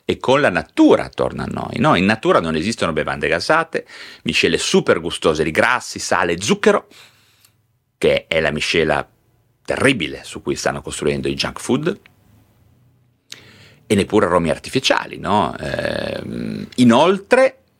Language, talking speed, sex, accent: Italian, 135 wpm, male, native